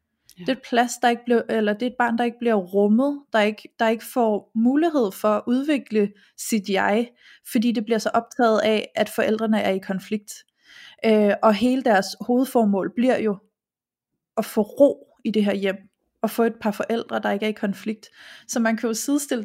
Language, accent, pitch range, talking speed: Danish, native, 205-240 Hz, 205 wpm